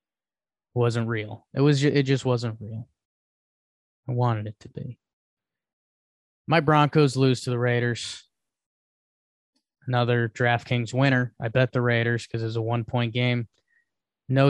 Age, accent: 20-39, American